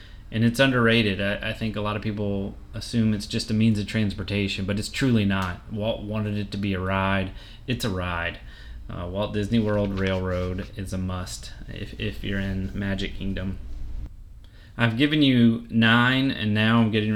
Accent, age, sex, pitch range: American, 30-49, male, 100-115 Hz